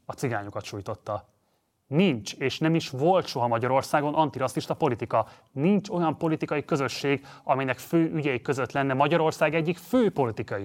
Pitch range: 125-160 Hz